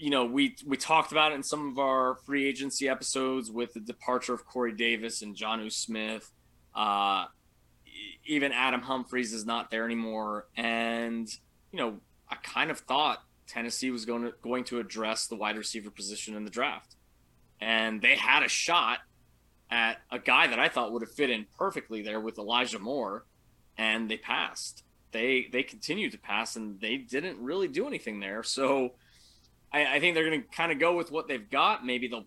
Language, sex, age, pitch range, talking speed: English, male, 20-39, 110-145 Hz, 190 wpm